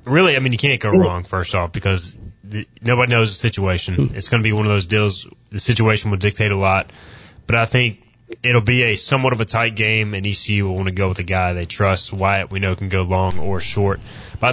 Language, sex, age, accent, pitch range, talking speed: English, male, 20-39, American, 100-120 Hz, 245 wpm